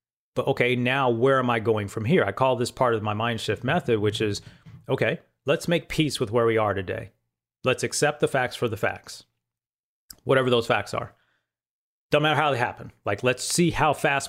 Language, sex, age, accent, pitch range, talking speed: English, male, 40-59, American, 110-145 Hz, 210 wpm